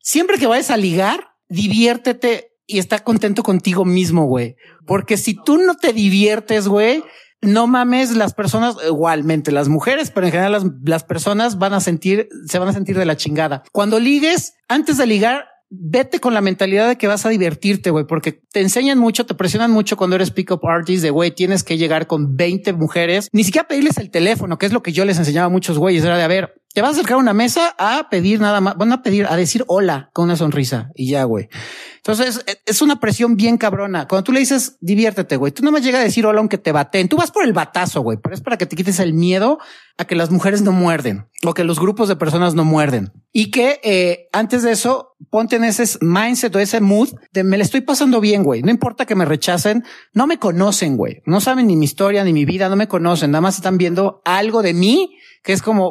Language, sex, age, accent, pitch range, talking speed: Spanish, male, 40-59, Mexican, 175-230 Hz, 235 wpm